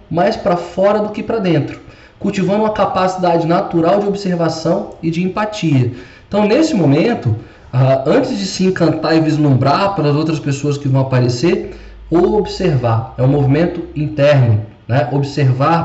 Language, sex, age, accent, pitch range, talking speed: Portuguese, male, 20-39, Brazilian, 130-180 Hz, 150 wpm